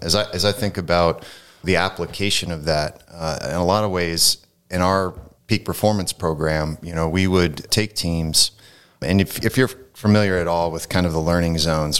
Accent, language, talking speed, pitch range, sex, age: American, English, 200 wpm, 80-95 Hz, male, 30-49